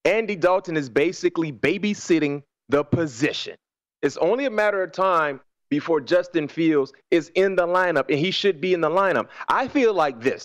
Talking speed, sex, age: 180 wpm, male, 30-49